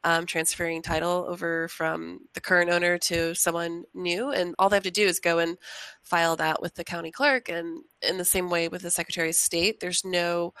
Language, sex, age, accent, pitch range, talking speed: English, female, 20-39, American, 165-190 Hz, 215 wpm